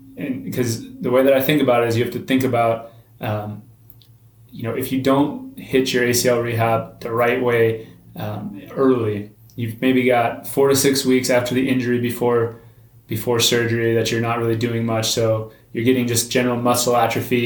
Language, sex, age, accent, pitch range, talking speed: English, male, 20-39, American, 115-125 Hz, 195 wpm